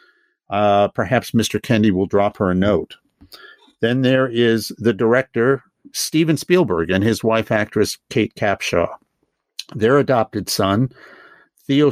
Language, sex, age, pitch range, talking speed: English, male, 50-69, 100-135 Hz, 130 wpm